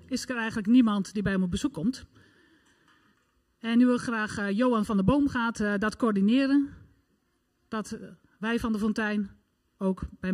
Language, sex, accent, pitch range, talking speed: Dutch, male, Dutch, 205-255 Hz, 175 wpm